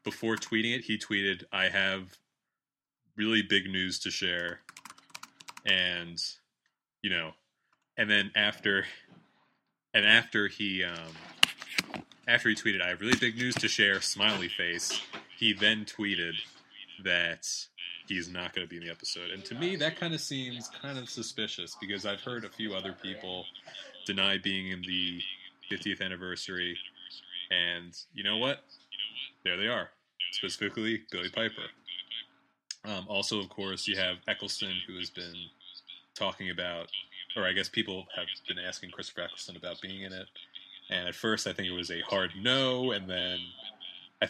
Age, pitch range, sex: 20-39, 90-105 Hz, male